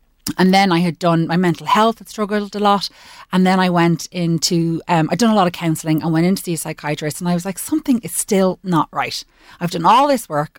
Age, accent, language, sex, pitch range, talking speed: 30-49, Irish, English, female, 150-185 Hz, 255 wpm